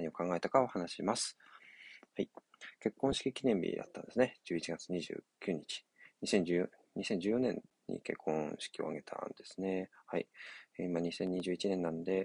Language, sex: Japanese, male